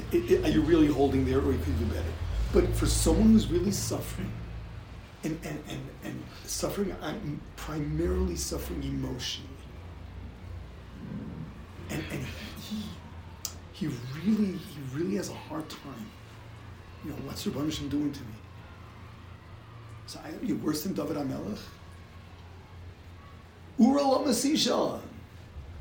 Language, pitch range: English, 90-145 Hz